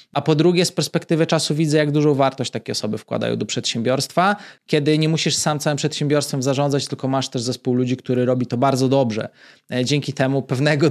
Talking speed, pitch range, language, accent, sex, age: 195 wpm, 130-165 Hz, Polish, native, male, 20-39